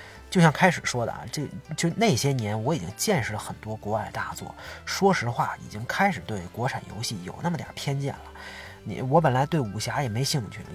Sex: male